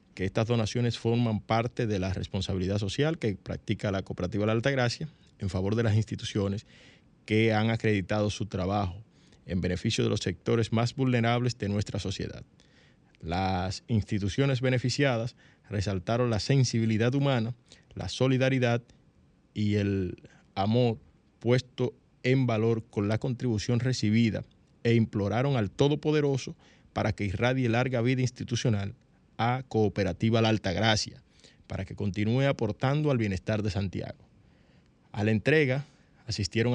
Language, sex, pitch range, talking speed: Spanish, male, 100-125 Hz, 135 wpm